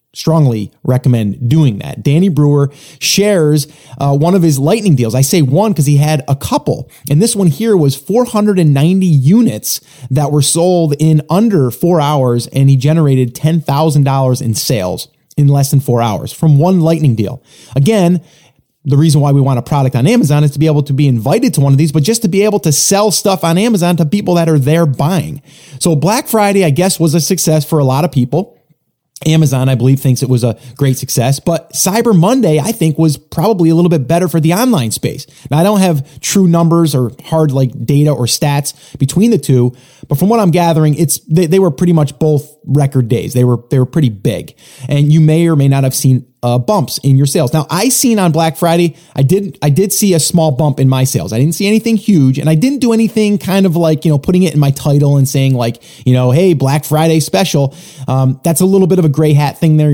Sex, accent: male, American